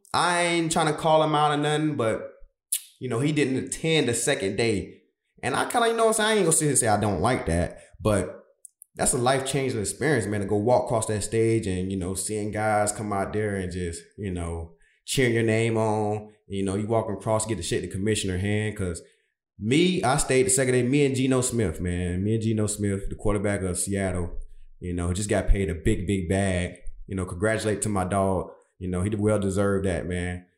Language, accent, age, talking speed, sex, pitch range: English, American, 20-39, 230 wpm, male, 100-135 Hz